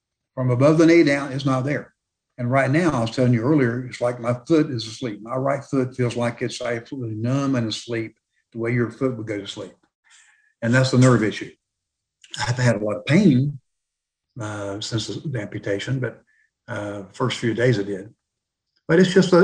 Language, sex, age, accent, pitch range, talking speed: English, male, 60-79, American, 115-140 Hz, 205 wpm